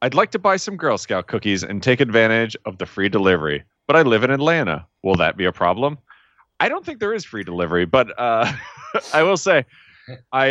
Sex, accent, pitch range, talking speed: male, American, 85-115 Hz, 215 wpm